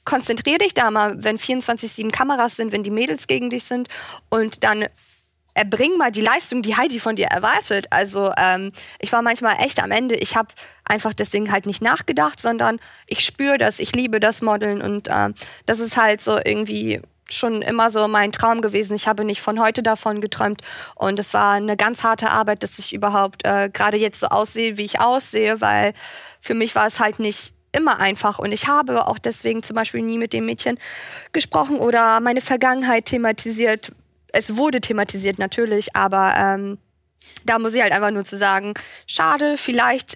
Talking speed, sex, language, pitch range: 190 wpm, female, German, 205-235 Hz